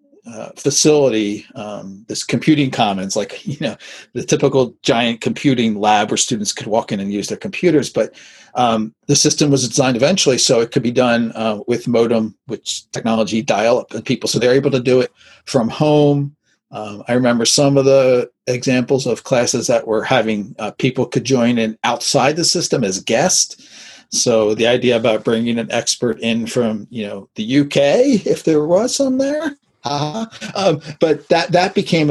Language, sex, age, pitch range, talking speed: English, male, 40-59, 115-145 Hz, 185 wpm